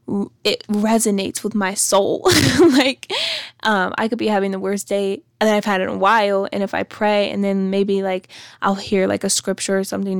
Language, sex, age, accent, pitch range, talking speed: English, female, 10-29, American, 195-210 Hz, 205 wpm